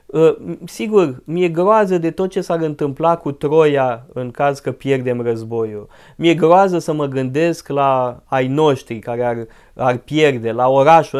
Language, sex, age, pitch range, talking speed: Romanian, male, 20-39, 125-170 Hz, 160 wpm